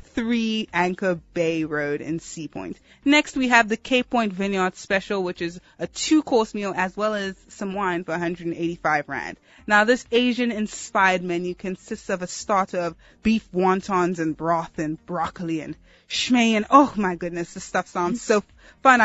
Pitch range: 175-225 Hz